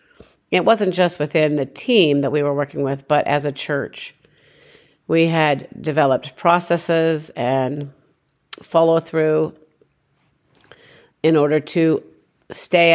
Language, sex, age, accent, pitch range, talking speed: English, female, 50-69, American, 140-165 Hz, 120 wpm